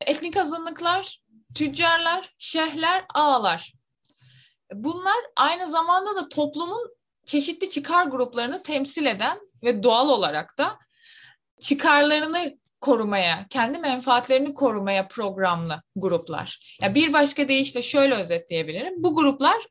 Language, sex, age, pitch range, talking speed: Turkish, female, 20-39, 200-310 Hz, 105 wpm